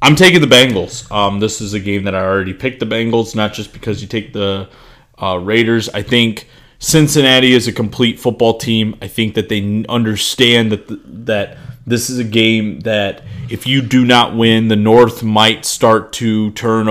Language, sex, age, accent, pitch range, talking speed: English, male, 20-39, American, 105-125 Hz, 195 wpm